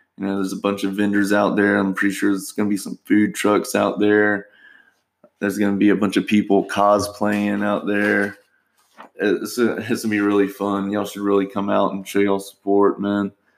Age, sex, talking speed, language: 20-39, male, 220 wpm, English